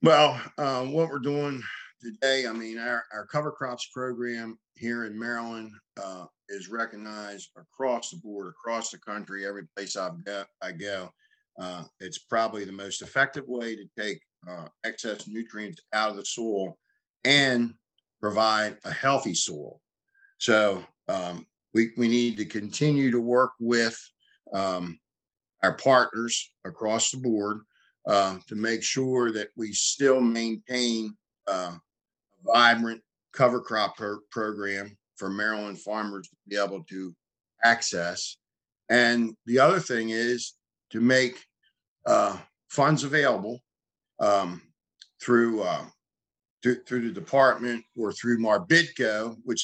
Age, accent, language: 50-69, American, English